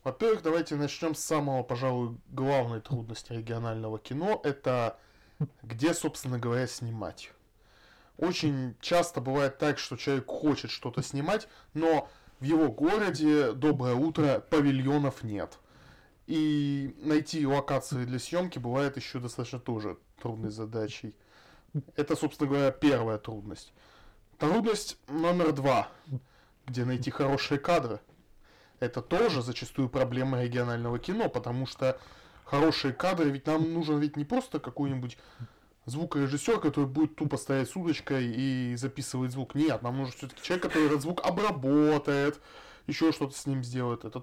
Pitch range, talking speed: 120-155 Hz, 135 wpm